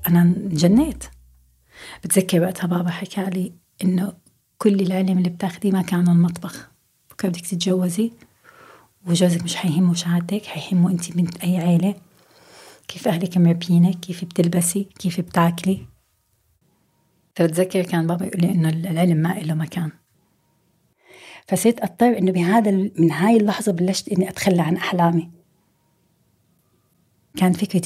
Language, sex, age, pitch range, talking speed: Arabic, female, 30-49, 175-195 Hz, 125 wpm